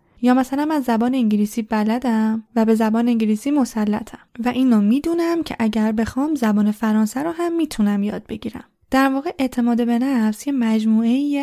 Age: 10-29